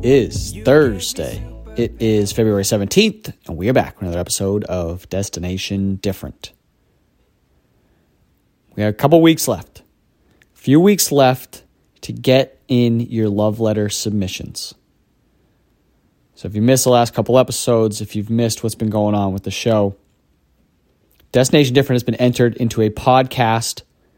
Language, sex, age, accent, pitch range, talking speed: English, male, 30-49, American, 100-125 Hz, 150 wpm